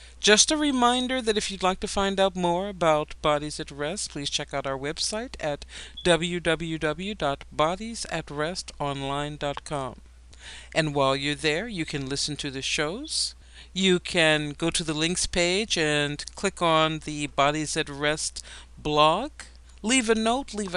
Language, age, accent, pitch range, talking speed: English, 50-69, American, 150-210 Hz, 145 wpm